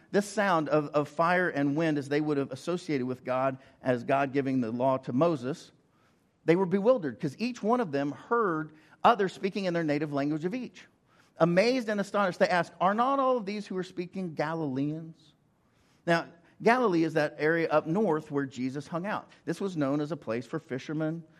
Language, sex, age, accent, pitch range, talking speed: English, male, 50-69, American, 135-175 Hz, 200 wpm